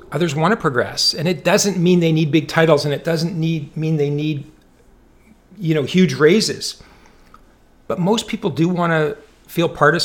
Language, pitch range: English, 150-195 Hz